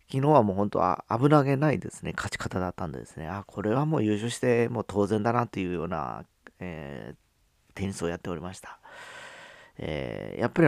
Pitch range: 85-110 Hz